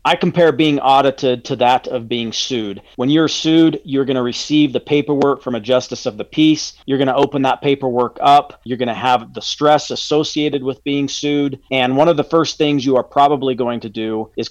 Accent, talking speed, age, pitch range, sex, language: American, 210 wpm, 40-59, 120-145 Hz, male, English